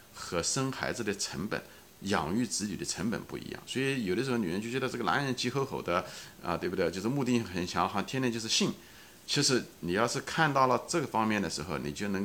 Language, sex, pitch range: Chinese, male, 95-140 Hz